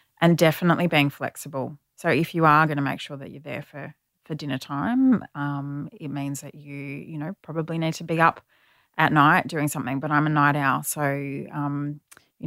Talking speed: 205 wpm